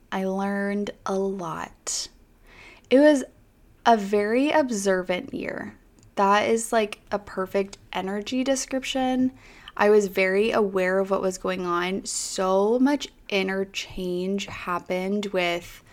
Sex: female